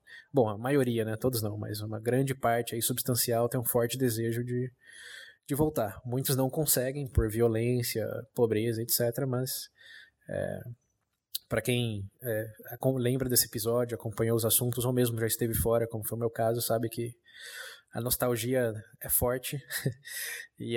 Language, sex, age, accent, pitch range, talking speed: Portuguese, male, 20-39, Brazilian, 115-130 Hz, 155 wpm